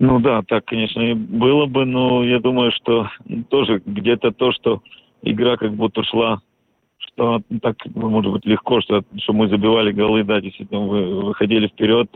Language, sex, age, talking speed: Russian, male, 40-59, 165 wpm